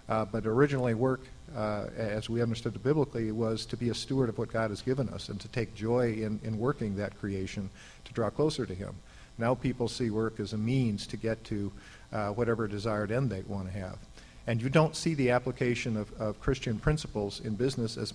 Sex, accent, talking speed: male, American, 215 wpm